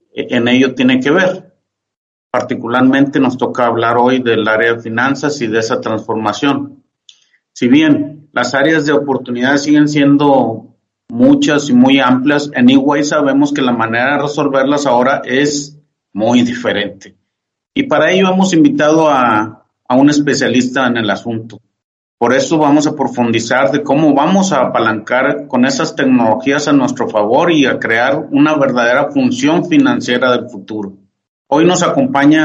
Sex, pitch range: male, 125-180 Hz